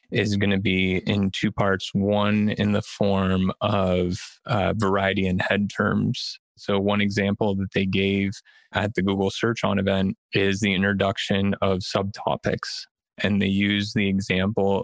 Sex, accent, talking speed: male, American, 160 wpm